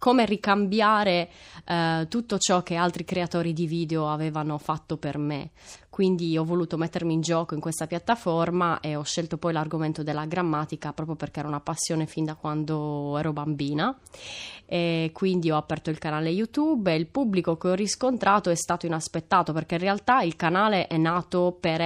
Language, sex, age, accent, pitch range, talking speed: Italian, female, 20-39, native, 155-175 Hz, 175 wpm